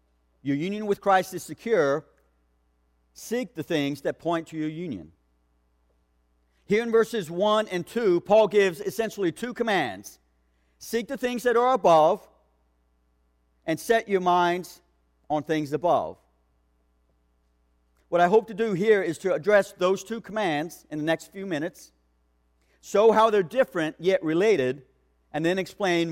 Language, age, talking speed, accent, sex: English, 50-69, 145 wpm, American, male